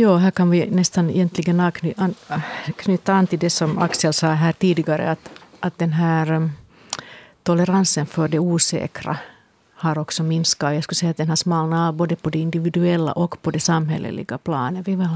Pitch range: 155-185 Hz